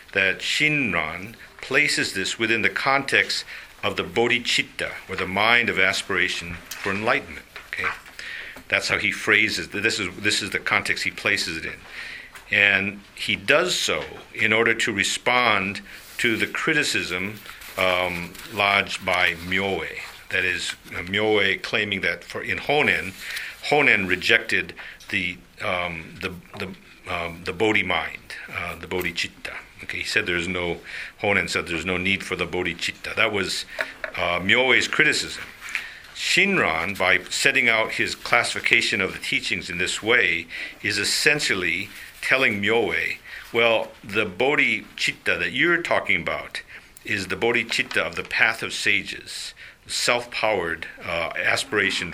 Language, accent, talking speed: English, American, 140 wpm